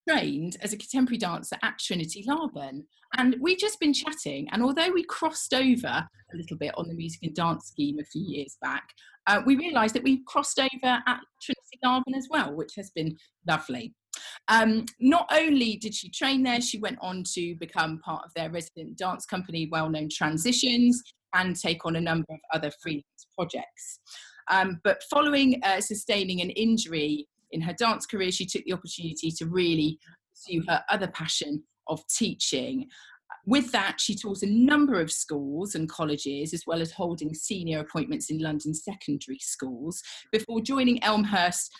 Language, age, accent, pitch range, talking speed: English, 30-49, British, 160-245 Hz, 175 wpm